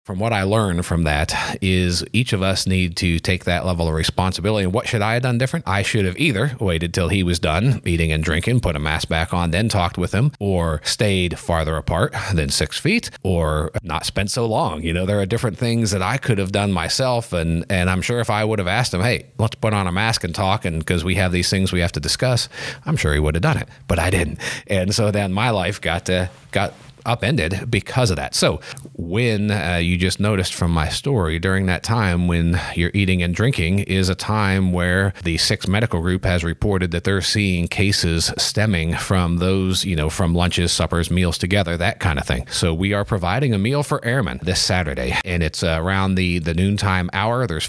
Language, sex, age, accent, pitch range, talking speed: English, male, 40-59, American, 85-105 Hz, 230 wpm